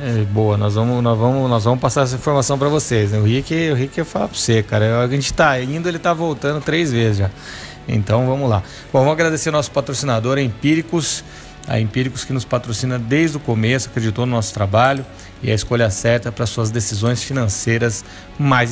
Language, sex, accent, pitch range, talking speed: Portuguese, male, Brazilian, 110-140 Hz, 200 wpm